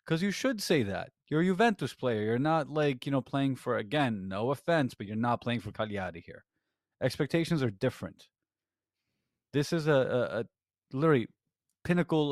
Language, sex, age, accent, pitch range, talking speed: English, male, 30-49, American, 105-145 Hz, 175 wpm